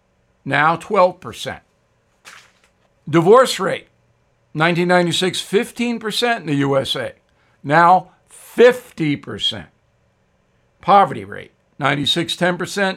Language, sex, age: English, male, 60-79